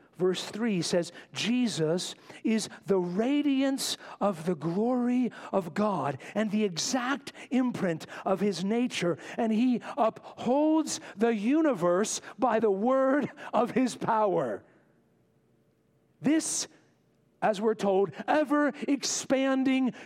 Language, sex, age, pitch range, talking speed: English, male, 50-69, 190-245 Hz, 105 wpm